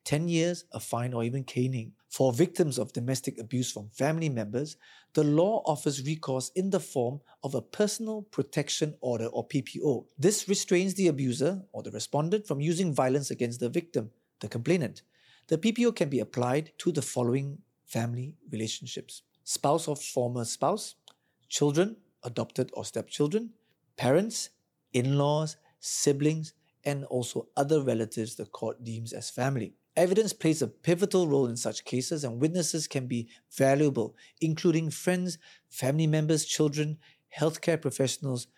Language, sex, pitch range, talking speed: English, male, 125-170 Hz, 145 wpm